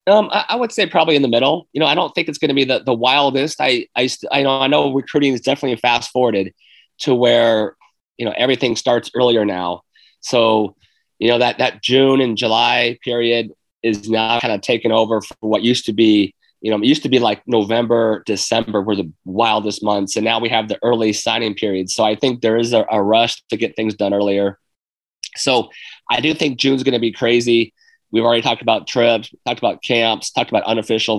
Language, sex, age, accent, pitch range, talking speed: English, male, 30-49, American, 110-130 Hz, 220 wpm